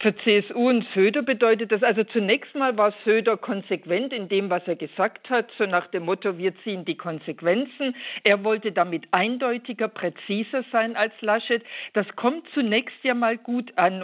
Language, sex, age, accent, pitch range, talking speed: German, female, 50-69, German, 185-240 Hz, 175 wpm